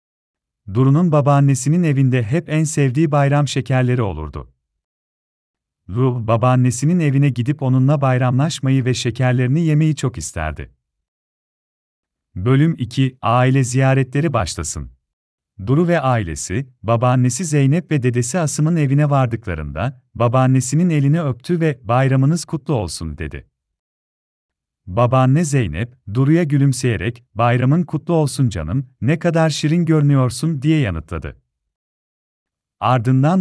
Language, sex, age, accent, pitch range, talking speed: Turkish, male, 40-59, native, 90-145 Hz, 105 wpm